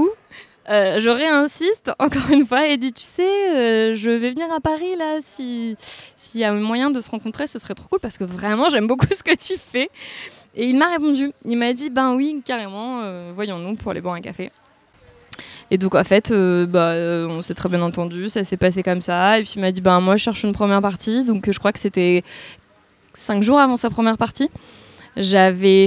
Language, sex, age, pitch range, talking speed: French, female, 20-39, 190-255 Hz, 230 wpm